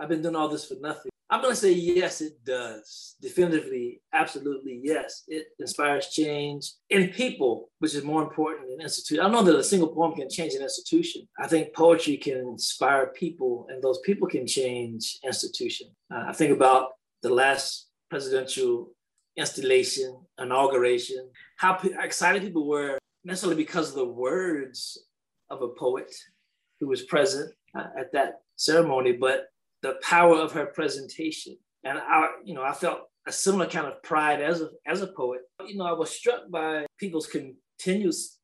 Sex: male